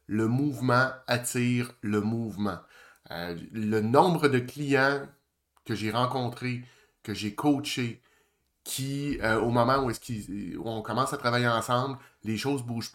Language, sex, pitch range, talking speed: French, male, 110-140 Hz, 155 wpm